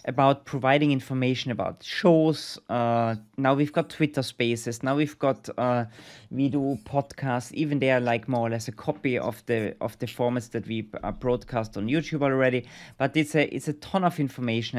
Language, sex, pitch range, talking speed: English, male, 115-145 Hz, 185 wpm